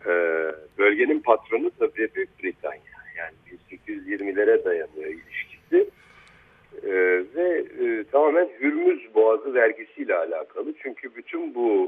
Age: 60-79